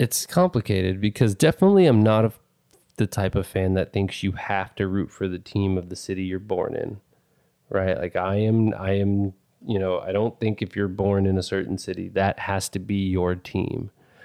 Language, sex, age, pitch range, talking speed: English, male, 30-49, 95-105 Hz, 205 wpm